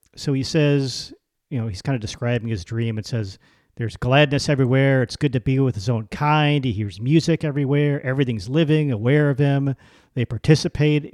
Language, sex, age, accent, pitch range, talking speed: English, male, 50-69, American, 120-150 Hz, 190 wpm